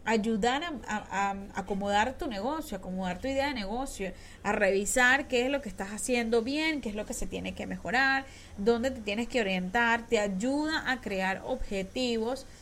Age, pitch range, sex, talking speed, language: 10-29, 200-260 Hz, female, 185 wpm, Spanish